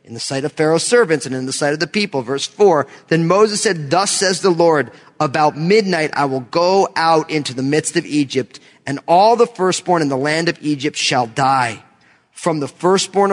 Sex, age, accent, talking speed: male, 30-49, American, 210 wpm